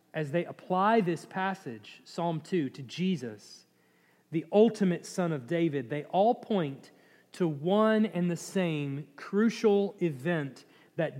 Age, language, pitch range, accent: 40-59, English, 160-225 Hz, American